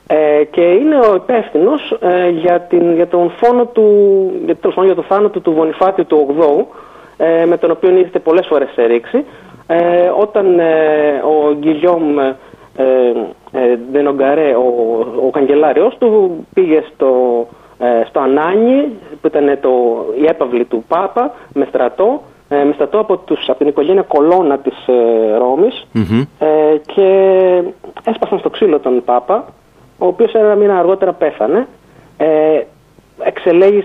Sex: male